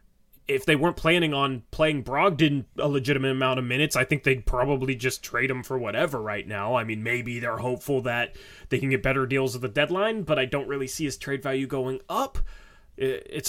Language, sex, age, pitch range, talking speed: English, male, 20-39, 130-170 Hz, 215 wpm